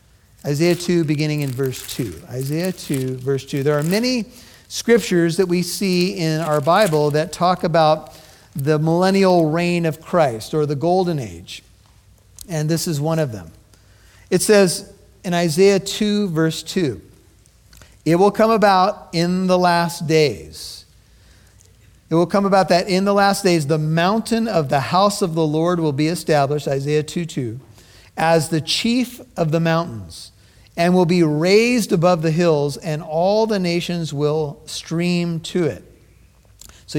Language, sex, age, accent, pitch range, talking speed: English, male, 50-69, American, 150-185 Hz, 160 wpm